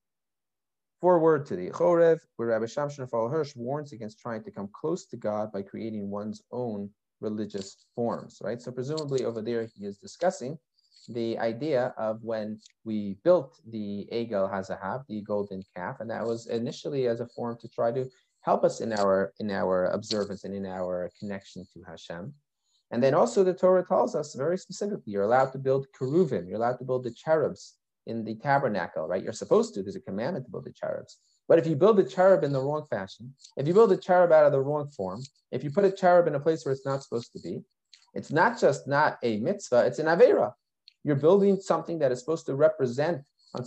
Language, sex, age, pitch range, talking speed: English, male, 30-49, 110-160 Hz, 210 wpm